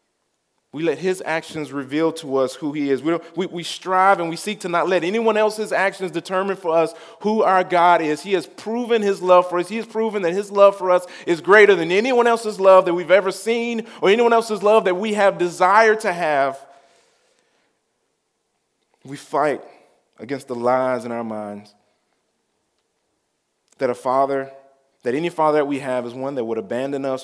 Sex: male